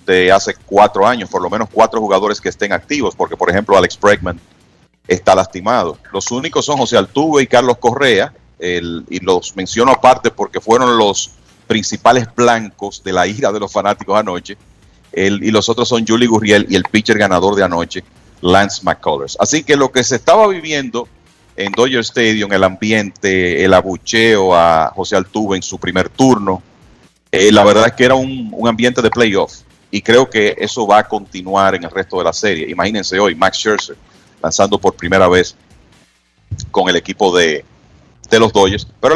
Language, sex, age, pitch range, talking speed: Spanish, male, 40-59, 95-115 Hz, 185 wpm